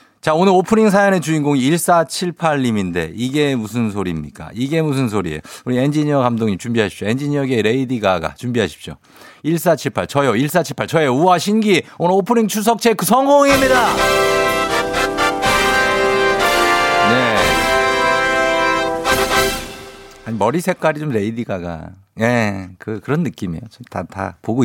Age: 50-69